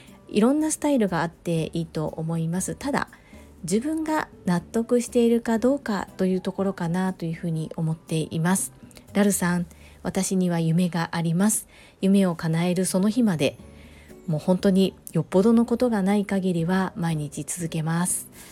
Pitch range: 165-220 Hz